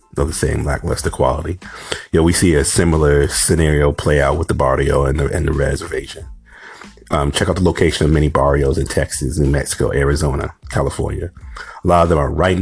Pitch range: 70-90 Hz